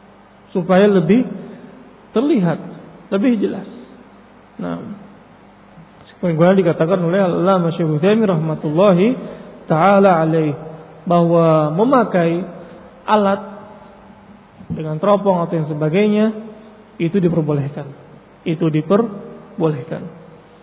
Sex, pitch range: male, 175-230 Hz